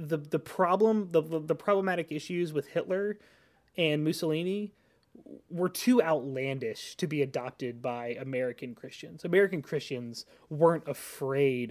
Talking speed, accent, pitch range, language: 130 wpm, American, 130-185 Hz, English